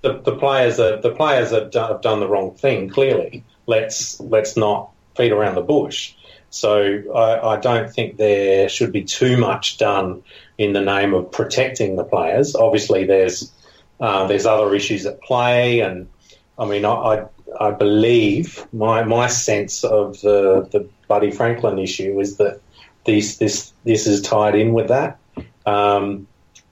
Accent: Australian